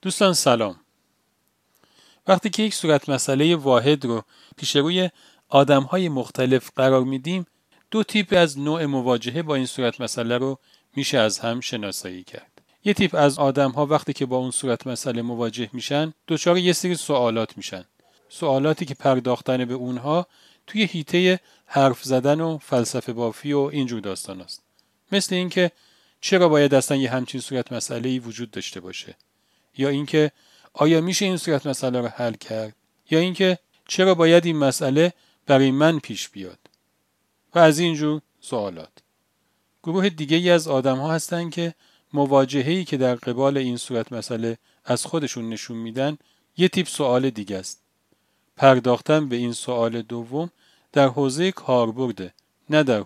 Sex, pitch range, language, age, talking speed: male, 120-165 Hz, Persian, 40-59, 155 wpm